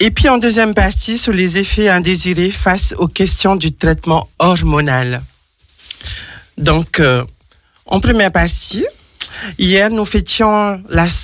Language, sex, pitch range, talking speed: French, male, 150-195 Hz, 130 wpm